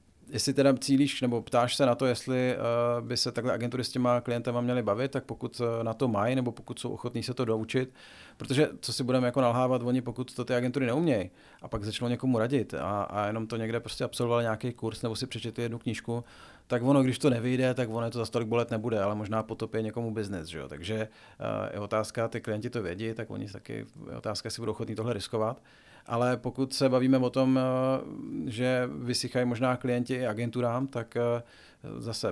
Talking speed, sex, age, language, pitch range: 205 wpm, male, 40-59, Czech, 110-125 Hz